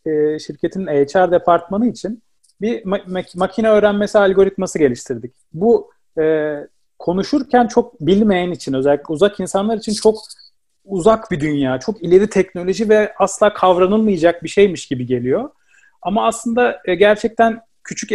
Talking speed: 120 wpm